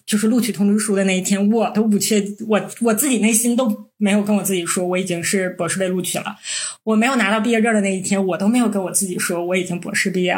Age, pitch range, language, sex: 20-39, 190-235 Hz, Chinese, female